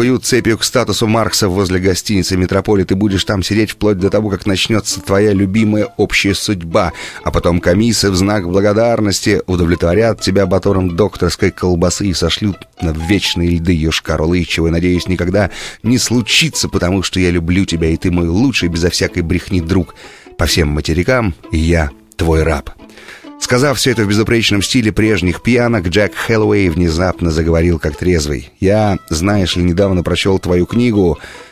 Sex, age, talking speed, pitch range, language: male, 30-49, 160 wpm, 90-110 Hz, Russian